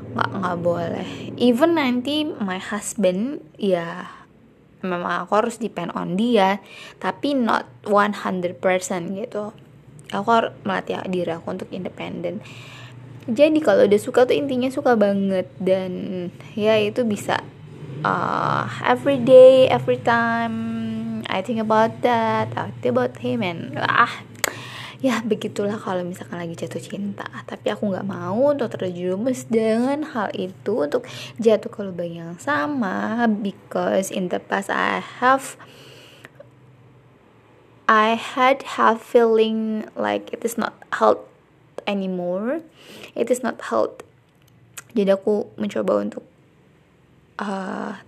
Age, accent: 20-39, native